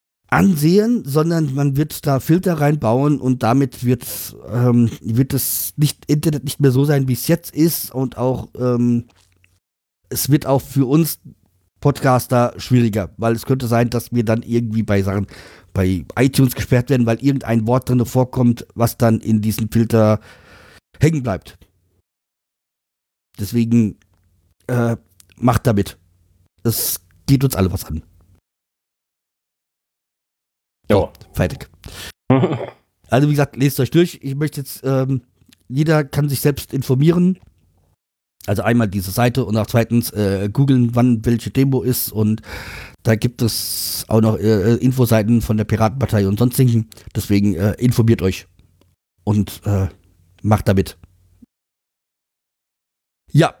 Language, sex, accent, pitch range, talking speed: German, male, German, 100-130 Hz, 135 wpm